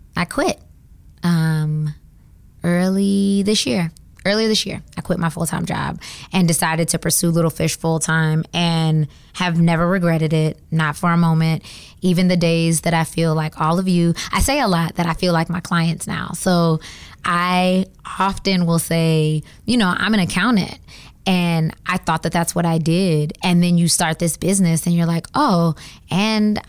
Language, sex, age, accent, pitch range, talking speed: English, female, 20-39, American, 165-185 Hz, 180 wpm